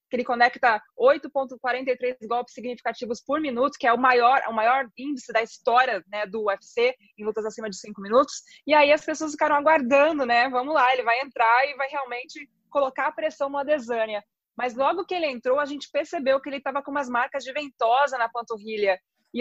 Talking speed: 200 wpm